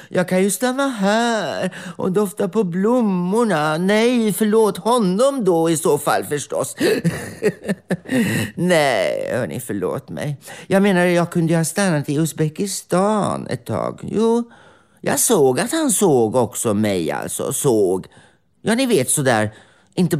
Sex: male